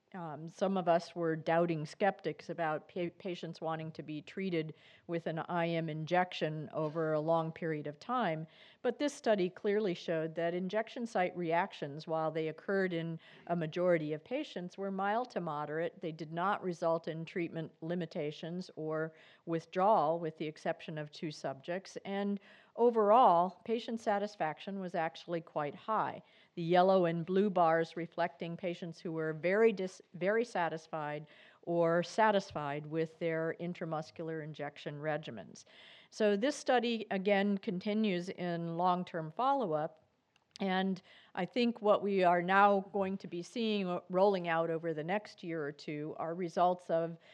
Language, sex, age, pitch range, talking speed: English, female, 50-69, 160-195 Hz, 150 wpm